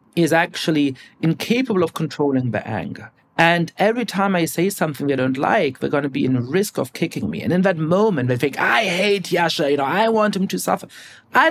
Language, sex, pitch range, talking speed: English, male, 130-195 Hz, 220 wpm